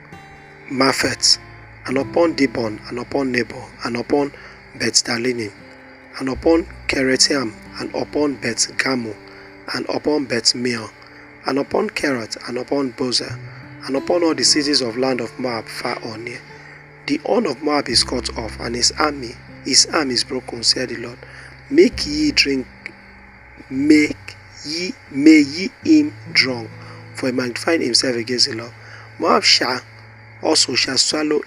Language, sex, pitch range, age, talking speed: English, male, 110-145 Hz, 40-59, 145 wpm